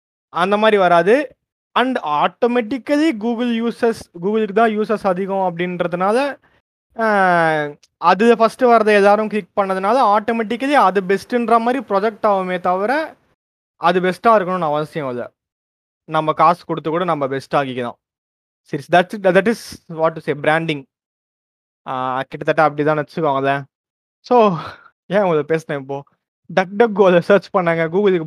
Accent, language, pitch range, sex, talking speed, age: native, Tamil, 150-215 Hz, male, 120 wpm, 20-39